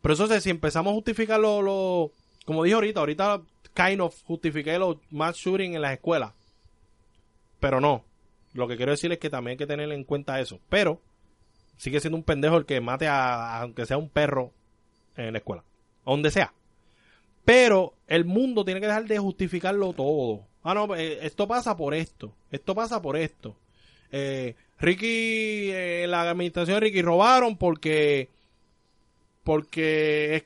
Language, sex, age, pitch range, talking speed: Spanish, male, 20-39, 140-200 Hz, 170 wpm